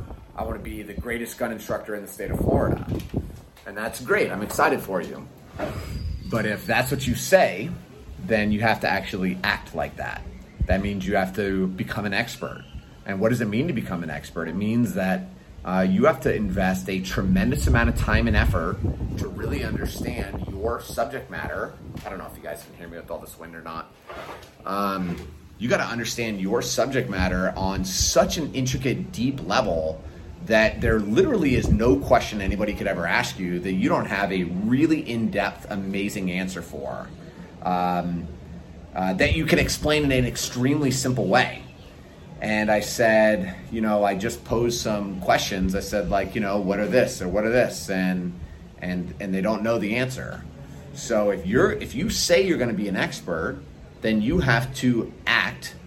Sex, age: male, 30-49